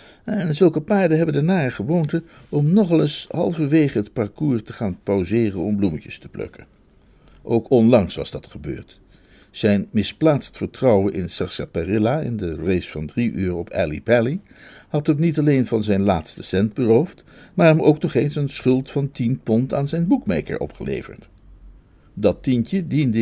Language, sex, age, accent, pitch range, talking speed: Dutch, male, 60-79, Dutch, 100-155 Hz, 170 wpm